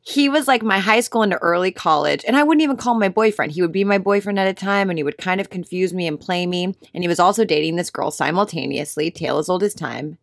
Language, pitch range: English, 170-240 Hz